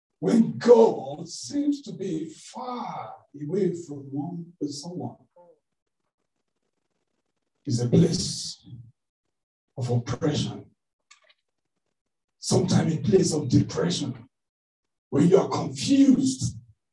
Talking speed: 85 wpm